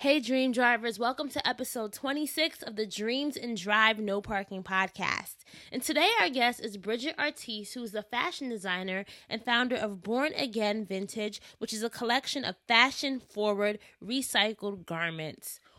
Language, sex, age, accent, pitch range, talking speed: English, female, 20-39, American, 200-255 Hz, 155 wpm